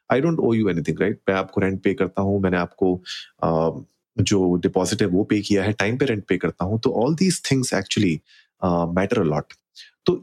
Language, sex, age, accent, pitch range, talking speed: Hindi, male, 30-49, native, 95-120 Hz, 205 wpm